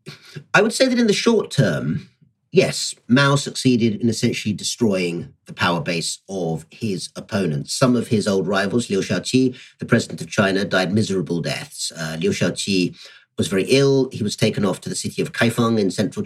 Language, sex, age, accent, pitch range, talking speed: English, male, 40-59, British, 90-130 Hz, 190 wpm